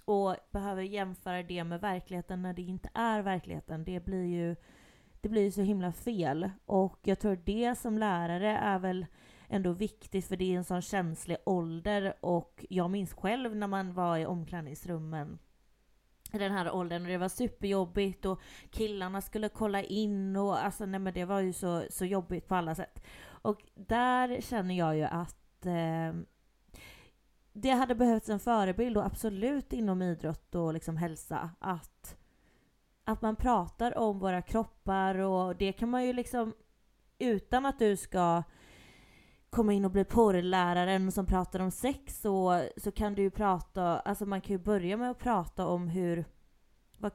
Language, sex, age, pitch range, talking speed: Swedish, female, 30-49, 180-210 Hz, 170 wpm